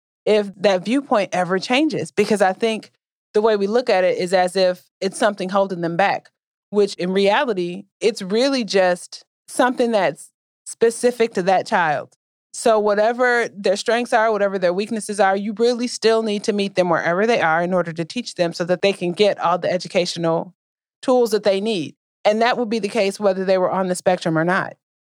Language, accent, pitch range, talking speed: English, American, 180-225 Hz, 200 wpm